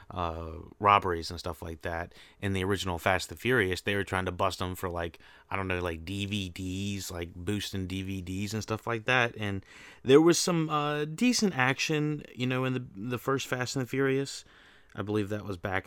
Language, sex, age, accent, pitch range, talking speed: English, male, 30-49, American, 90-105 Hz, 210 wpm